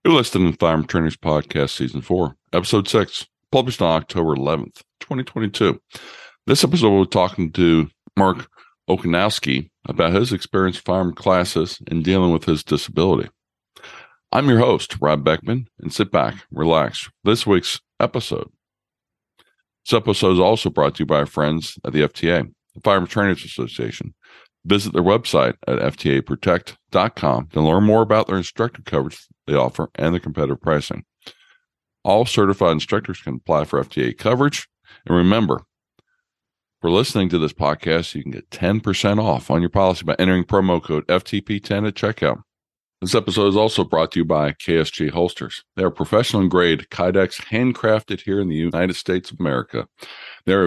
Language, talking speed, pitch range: English, 155 wpm, 80-100 Hz